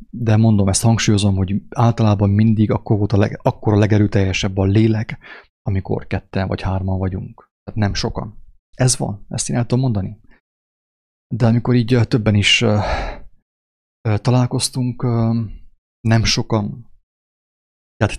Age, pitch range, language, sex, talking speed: 30-49, 100-115 Hz, English, male, 135 wpm